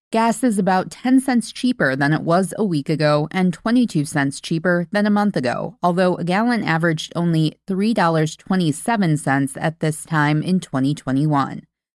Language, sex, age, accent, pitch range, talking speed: English, female, 20-39, American, 160-205 Hz, 155 wpm